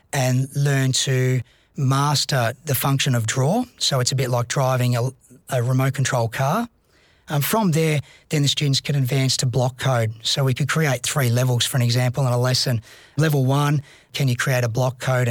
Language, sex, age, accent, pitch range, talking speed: English, male, 30-49, Australian, 125-145 Hz, 200 wpm